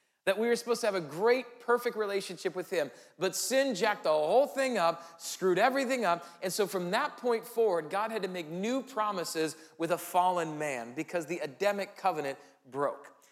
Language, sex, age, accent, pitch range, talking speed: English, male, 40-59, American, 185-255 Hz, 195 wpm